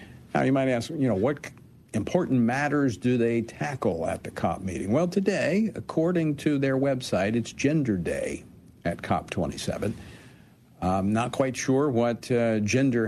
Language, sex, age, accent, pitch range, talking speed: English, male, 50-69, American, 100-135 Hz, 155 wpm